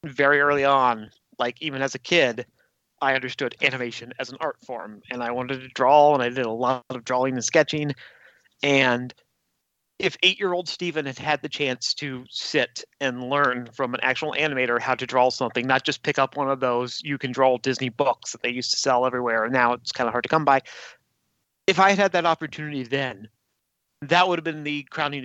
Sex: male